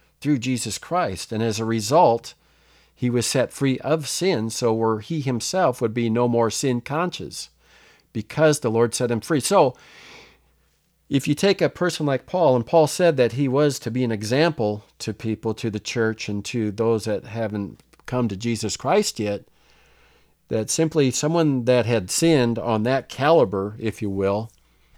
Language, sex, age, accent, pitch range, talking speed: English, male, 50-69, American, 105-140 Hz, 180 wpm